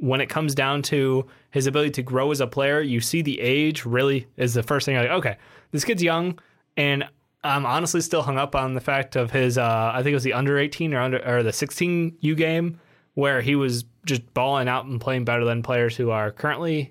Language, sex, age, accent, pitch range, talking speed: English, male, 20-39, American, 125-145 Hz, 225 wpm